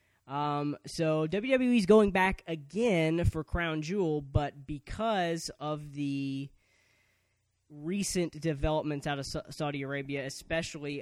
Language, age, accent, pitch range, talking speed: English, 20-39, American, 130-160 Hz, 120 wpm